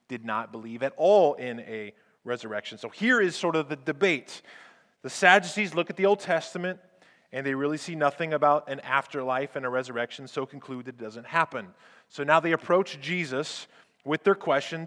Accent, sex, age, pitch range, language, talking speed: American, male, 30-49, 130-165 Hz, English, 185 wpm